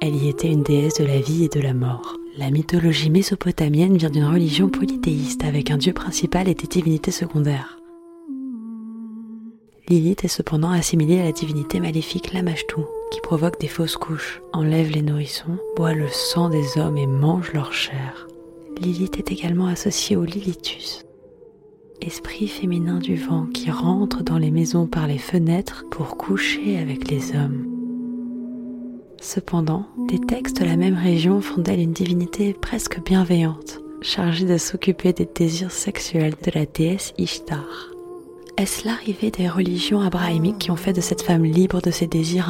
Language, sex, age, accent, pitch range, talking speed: French, female, 30-49, French, 155-200 Hz, 160 wpm